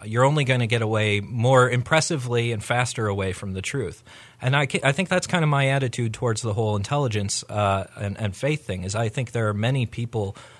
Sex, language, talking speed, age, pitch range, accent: male, English, 220 wpm, 40-59, 105-125 Hz, American